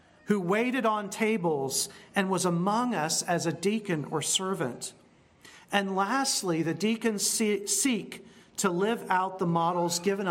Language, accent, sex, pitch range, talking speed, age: English, American, male, 150-200 Hz, 140 wpm, 40-59